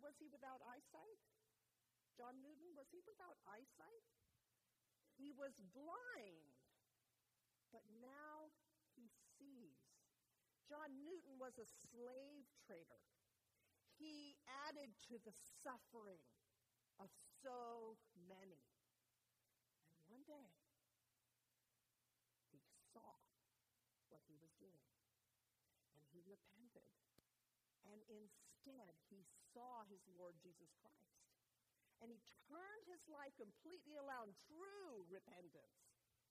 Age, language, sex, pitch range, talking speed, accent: 50-69, English, female, 175-290 Hz, 100 wpm, American